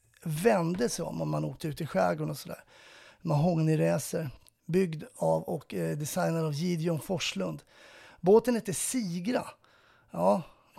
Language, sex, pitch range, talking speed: Swedish, male, 155-200 Hz, 140 wpm